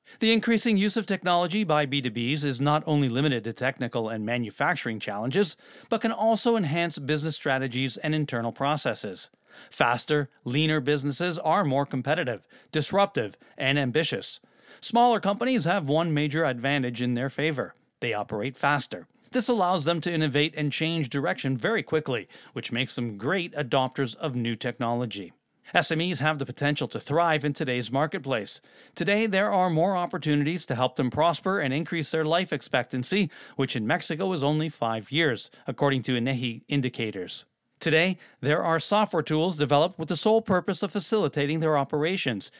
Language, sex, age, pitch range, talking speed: English, male, 40-59, 130-180 Hz, 160 wpm